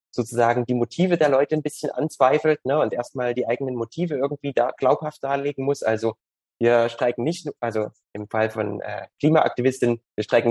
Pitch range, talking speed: 120-150 Hz, 175 wpm